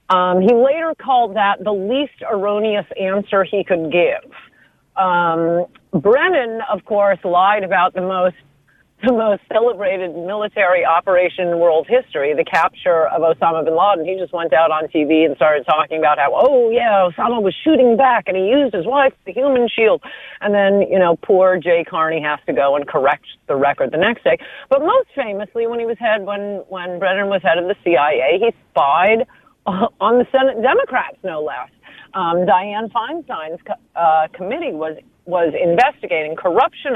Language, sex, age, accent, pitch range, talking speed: English, female, 40-59, American, 175-255 Hz, 175 wpm